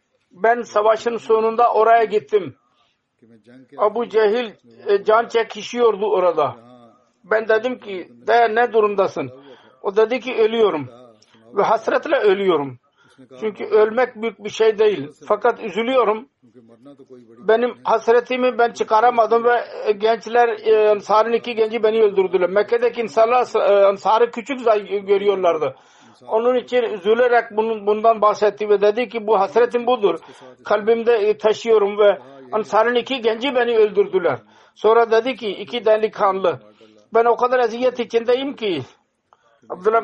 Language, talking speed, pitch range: Turkish, 115 wpm, 200-235 Hz